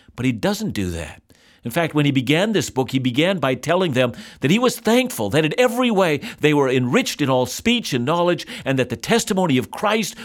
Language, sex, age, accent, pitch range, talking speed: English, male, 50-69, American, 120-175 Hz, 230 wpm